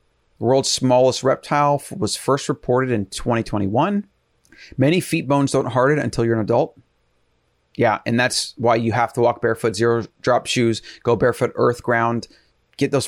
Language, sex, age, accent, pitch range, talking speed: English, male, 30-49, American, 115-140 Hz, 165 wpm